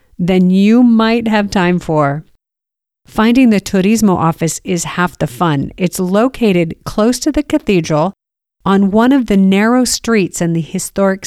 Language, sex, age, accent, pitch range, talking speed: English, female, 50-69, American, 155-200 Hz, 155 wpm